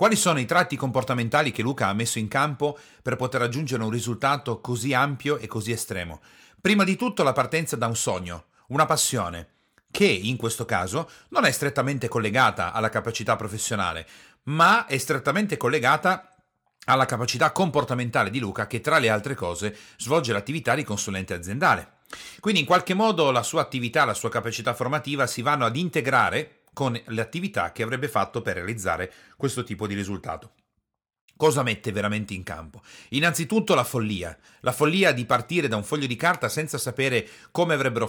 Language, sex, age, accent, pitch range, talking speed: Italian, male, 40-59, native, 110-150 Hz, 170 wpm